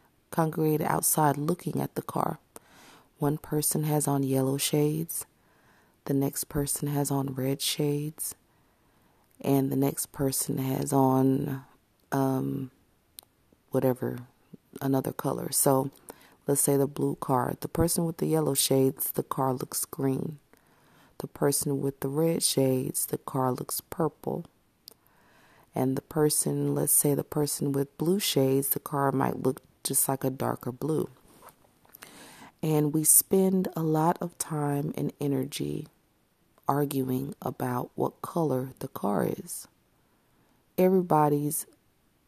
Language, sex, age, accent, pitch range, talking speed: English, female, 30-49, American, 135-155 Hz, 130 wpm